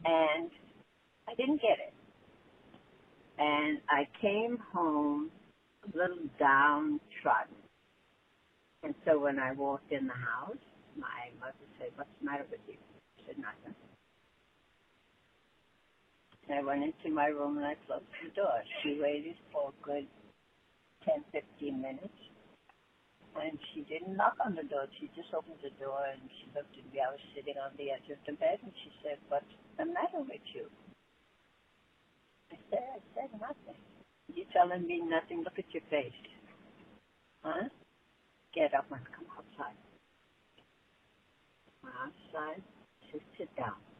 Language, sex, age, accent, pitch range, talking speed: English, female, 60-79, American, 145-230 Hz, 150 wpm